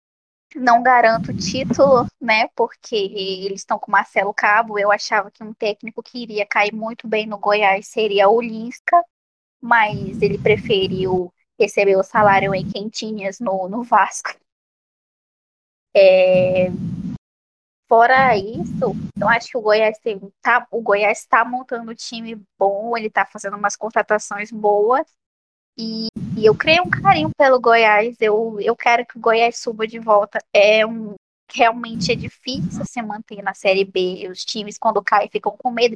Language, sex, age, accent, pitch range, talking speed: Portuguese, female, 10-29, Brazilian, 205-240 Hz, 150 wpm